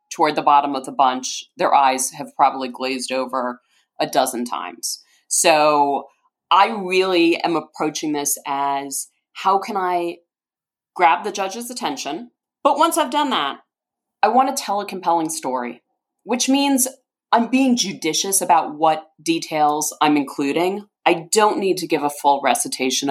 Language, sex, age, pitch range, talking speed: English, female, 30-49, 150-215 Hz, 155 wpm